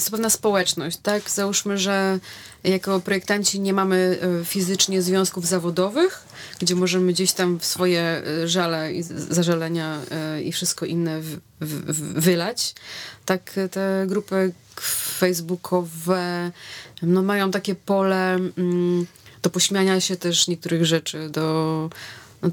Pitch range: 165-190 Hz